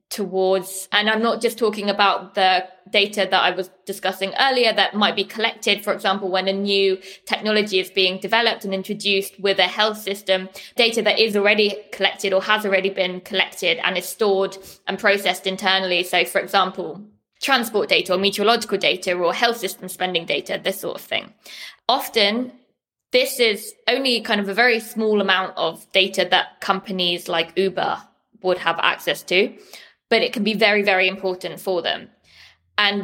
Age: 20-39